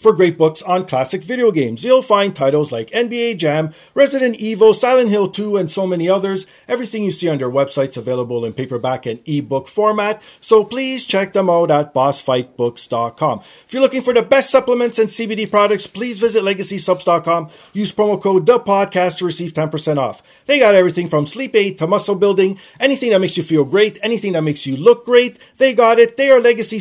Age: 40-59